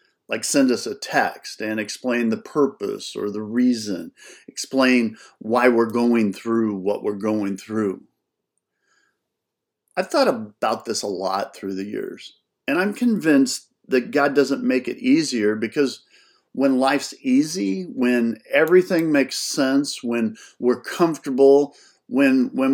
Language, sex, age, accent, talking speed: English, male, 50-69, American, 135 wpm